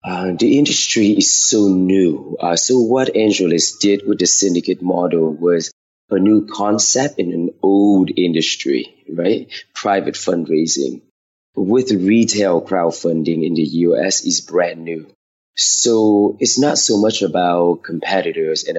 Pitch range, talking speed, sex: 85-105 Hz, 135 wpm, male